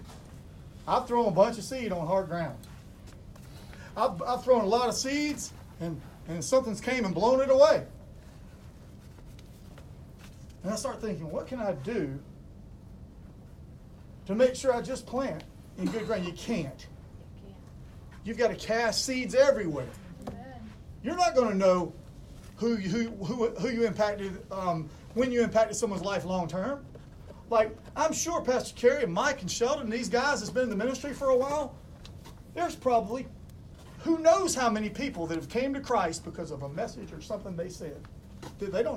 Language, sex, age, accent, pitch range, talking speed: English, male, 40-59, American, 170-250 Hz, 165 wpm